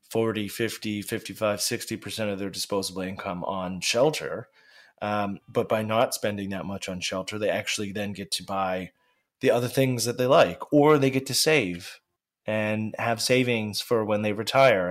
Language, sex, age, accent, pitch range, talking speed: English, male, 20-39, American, 100-120 Hz, 175 wpm